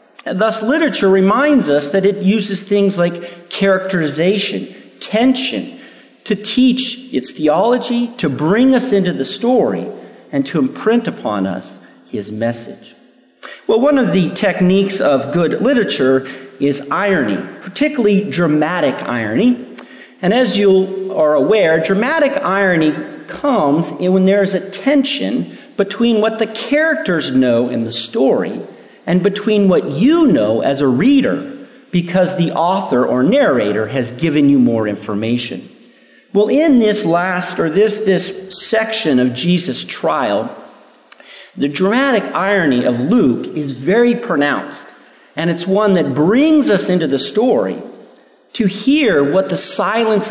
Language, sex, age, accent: English, male, 50-69, American